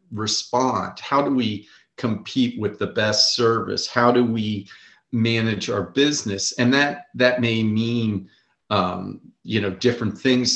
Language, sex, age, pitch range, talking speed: English, male, 40-59, 105-125 Hz, 140 wpm